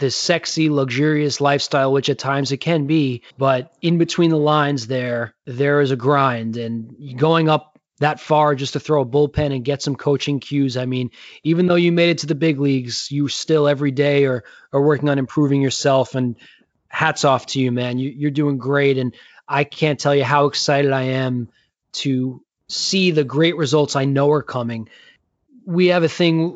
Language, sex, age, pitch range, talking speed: English, male, 20-39, 135-155 Hz, 195 wpm